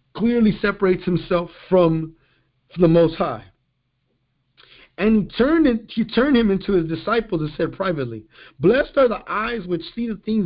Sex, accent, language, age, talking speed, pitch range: male, American, English, 50-69, 150 wpm, 130-200 Hz